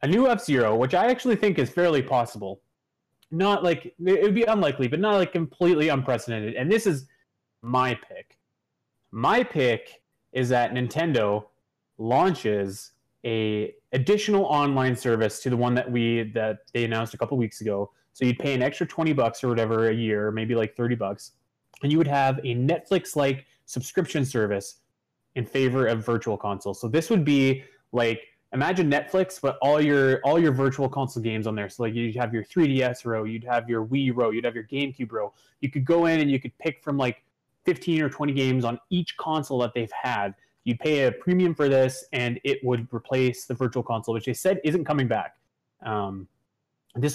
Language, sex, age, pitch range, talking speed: English, male, 20-39, 115-150 Hz, 190 wpm